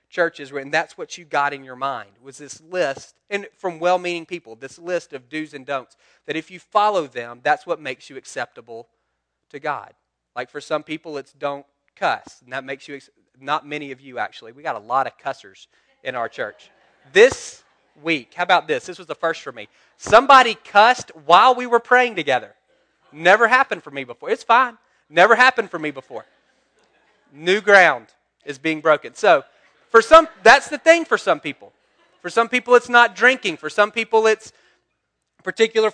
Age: 30-49